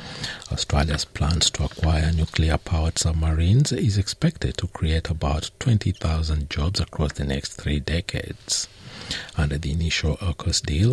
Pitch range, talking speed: 80-135 Hz, 125 wpm